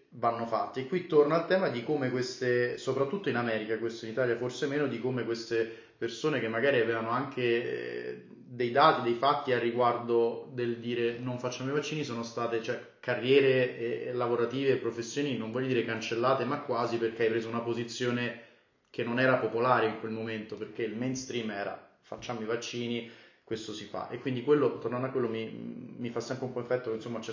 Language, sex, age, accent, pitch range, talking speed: Italian, male, 20-39, native, 115-135 Hz, 200 wpm